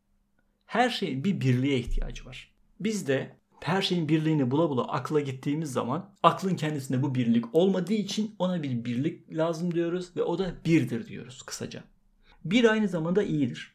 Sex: male